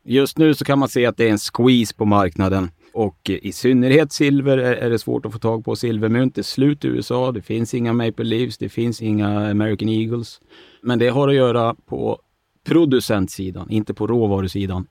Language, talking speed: Swedish, 200 wpm